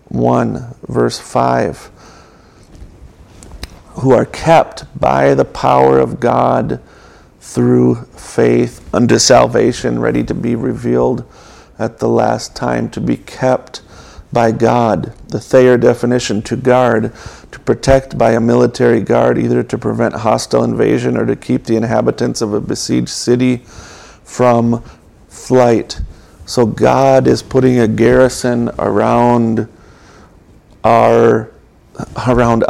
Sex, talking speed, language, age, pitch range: male, 115 wpm, English, 50-69, 90-125 Hz